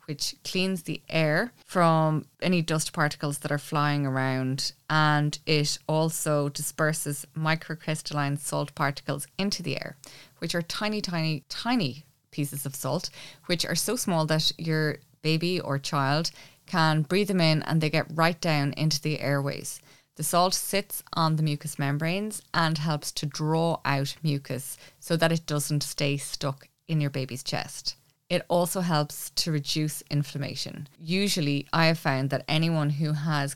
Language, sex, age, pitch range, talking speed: English, female, 20-39, 140-160 Hz, 155 wpm